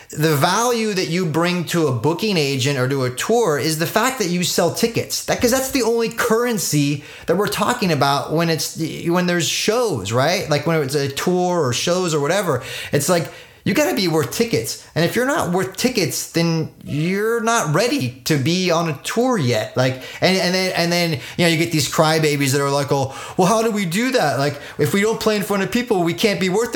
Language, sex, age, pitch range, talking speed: English, male, 30-49, 145-185 Hz, 235 wpm